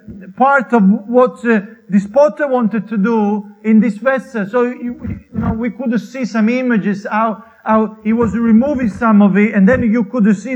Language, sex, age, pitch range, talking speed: English, male, 40-59, 200-240 Hz, 195 wpm